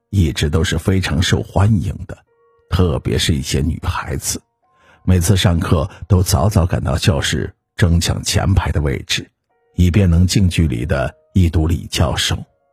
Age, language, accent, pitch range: 50-69, Chinese, native, 85-105 Hz